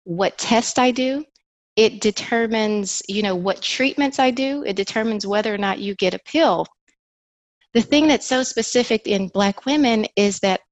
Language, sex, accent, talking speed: English, female, American, 175 wpm